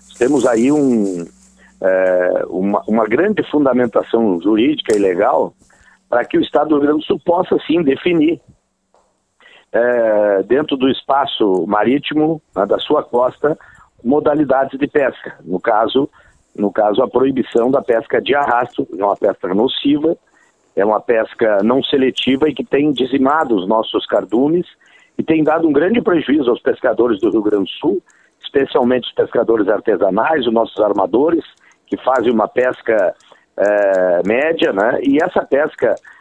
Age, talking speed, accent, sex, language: 50-69, 150 wpm, Brazilian, male, Portuguese